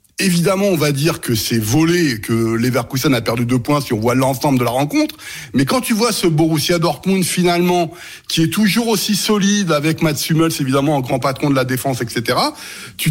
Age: 60-79